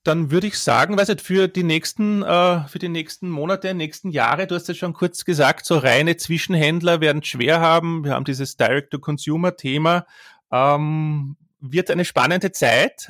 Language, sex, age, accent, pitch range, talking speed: German, male, 30-49, Austrian, 140-165 Hz, 160 wpm